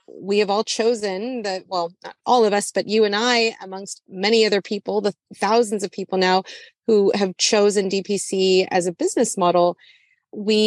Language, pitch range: English, 185-220 Hz